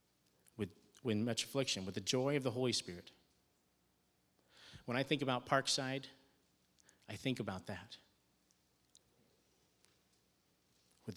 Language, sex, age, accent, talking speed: English, male, 40-59, American, 105 wpm